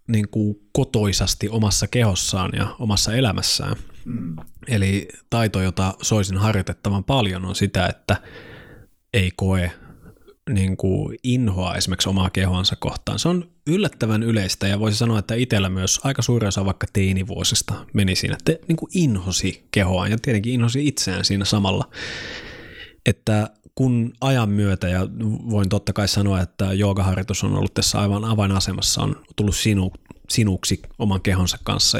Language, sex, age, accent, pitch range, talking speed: Finnish, male, 20-39, native, 95-115 Hz, 135 wpm